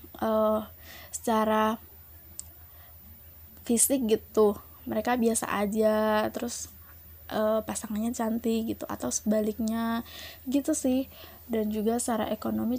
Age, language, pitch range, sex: 20-39, Indonesian, 180-235 Hz, female